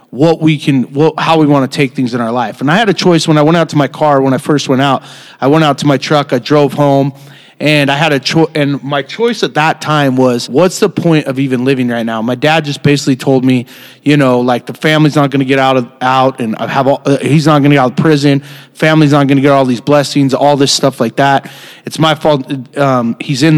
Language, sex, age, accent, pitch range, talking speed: English, male, 30-49, American, 135-155 Hz, 275 wpm